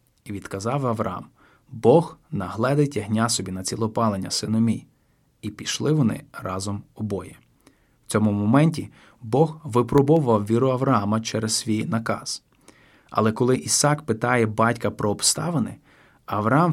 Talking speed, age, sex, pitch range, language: 120 wpm, 20-39, male, 110-140 Hz, Ukrainian